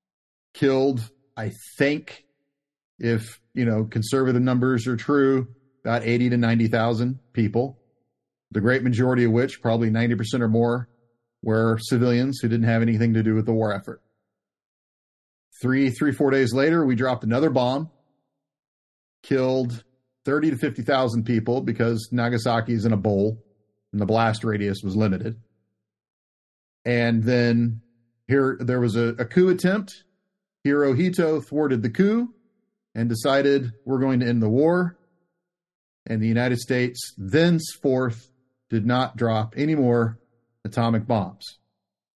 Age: 40-59